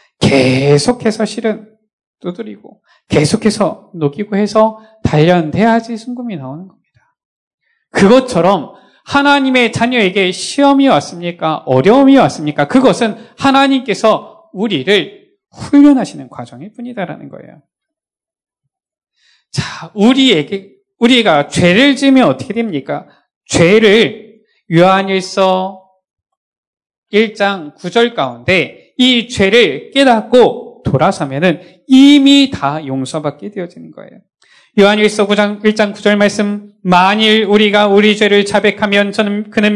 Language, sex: Korean, male